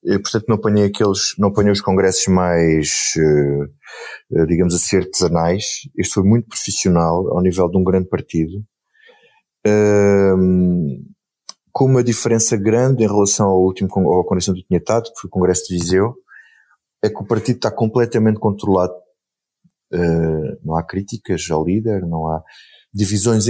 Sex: male